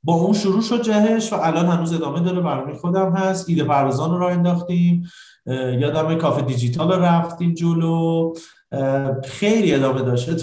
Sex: male